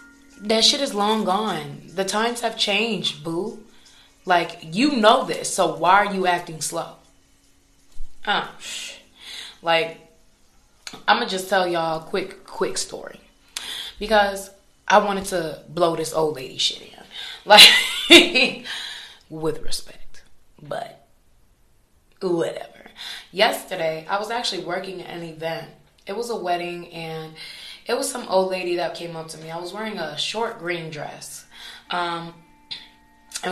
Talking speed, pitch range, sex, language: 140 wpm, 160-210 Hz, female, English